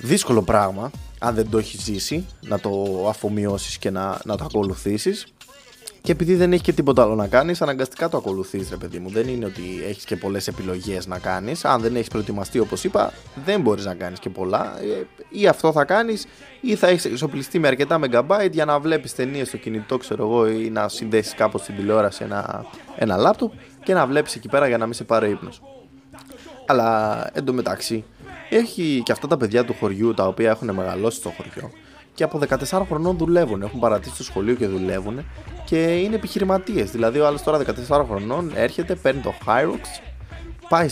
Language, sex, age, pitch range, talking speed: Greek, male, 20-39, 105-160 Hz, 190 wpm